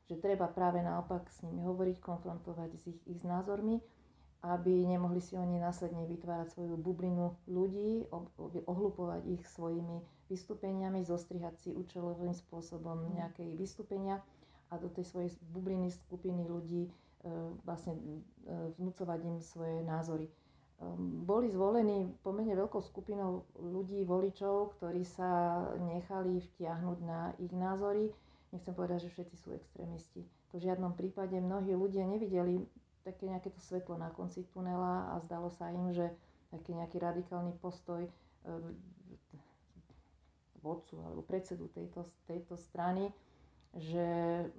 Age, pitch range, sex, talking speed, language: 40-59, 165-185 Hz, female, 125 wpm, Slovak